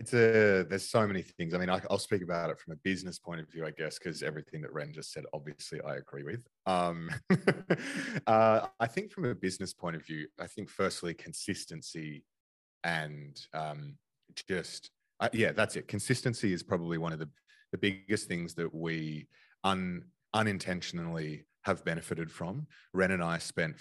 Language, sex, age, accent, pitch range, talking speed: English, male, 30-49, Australian, 75-90 Hz, 180 wpm